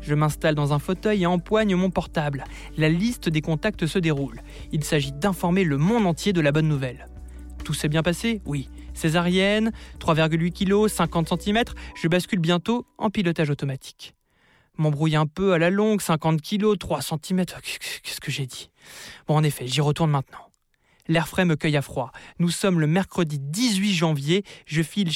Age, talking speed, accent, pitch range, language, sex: 20-39, 180 wpm, French, 150-195 Hz, French, male